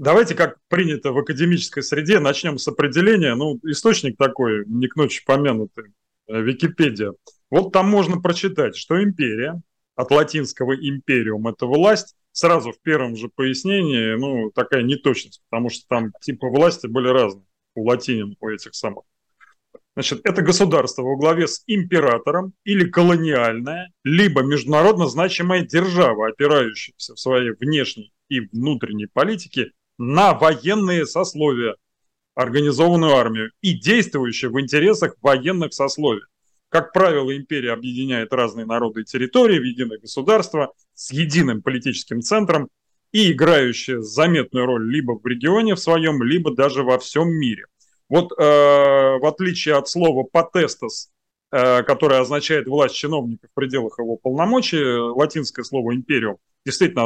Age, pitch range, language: 30-49, 125-170 Hz, Russian